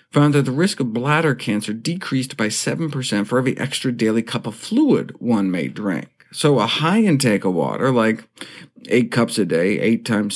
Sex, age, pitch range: male, 50-69, 115-150 Hz